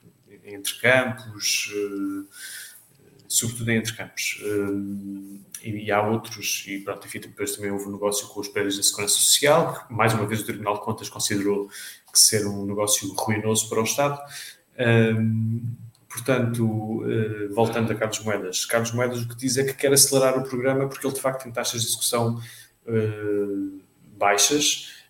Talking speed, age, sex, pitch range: 155 wpm, 20-39, male, 105-130 Hz